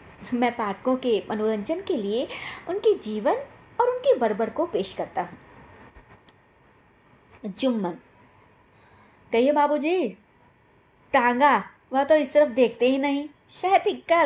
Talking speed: 115 wpm